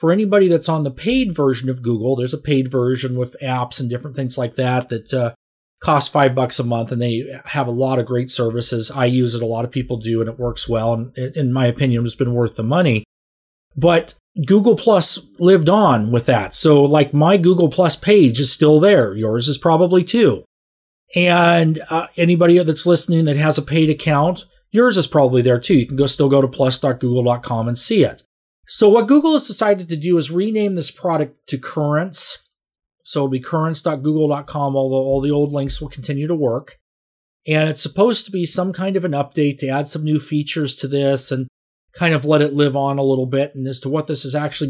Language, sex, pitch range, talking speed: English, male, 125-155 Hz, 215 wpm